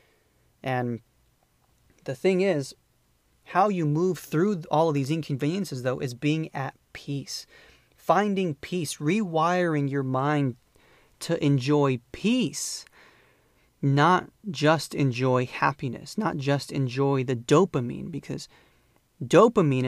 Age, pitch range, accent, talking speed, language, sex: 30-49, 135-170 Hz, American, 110 wpm, English, male